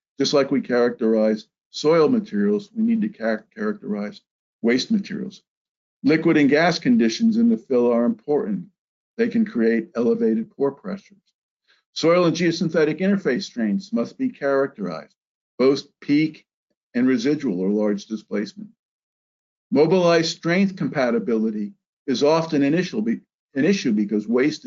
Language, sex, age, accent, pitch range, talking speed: English, male, 50-69, American, 140-220 Hz, 125 wpm